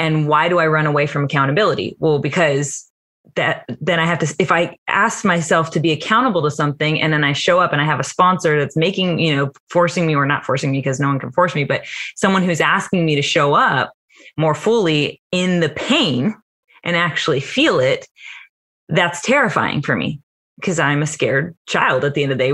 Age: 20-39